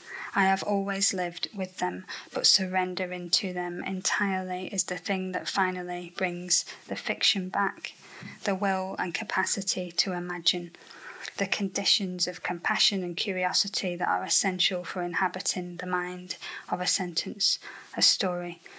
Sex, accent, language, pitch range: female, British, English, 180-195 Hz